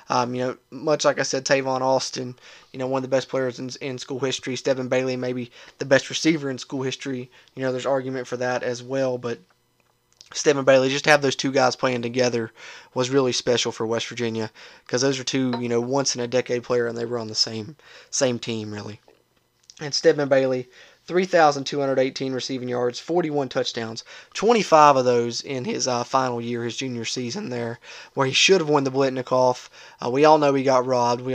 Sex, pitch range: male, 120-135 Hz